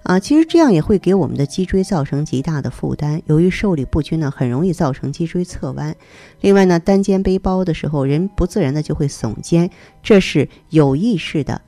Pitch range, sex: 135-180 Hz, female